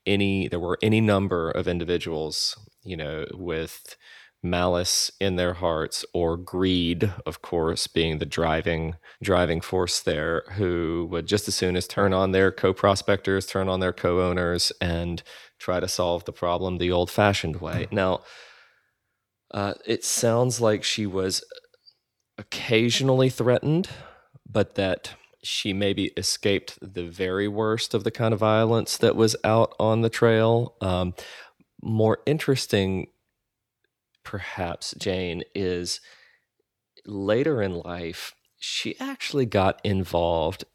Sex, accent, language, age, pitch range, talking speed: male, American, English, 30-49, 85-110 Hz, 135 wpm